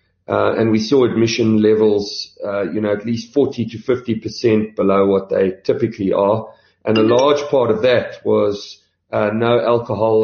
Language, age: English, 40-59